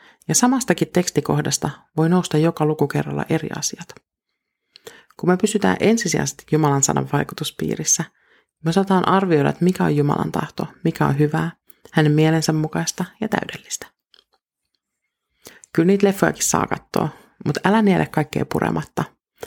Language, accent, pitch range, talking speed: Finnish, native, 150-190 Hz, 125 wpm